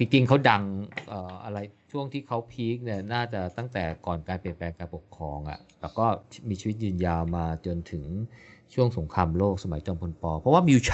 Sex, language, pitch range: male, Thai, 95-120 Hz